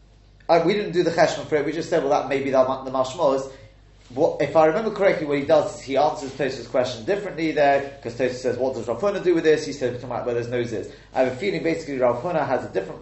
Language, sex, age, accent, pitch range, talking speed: English, male, 30-49, British, 125-160 Hz, 280 wpm